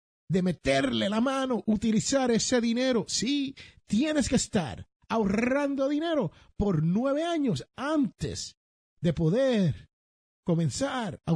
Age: 50-69